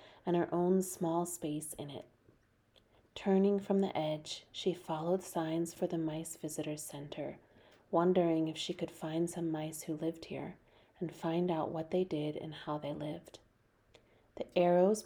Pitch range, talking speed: 155-180 Hz, 165 wpm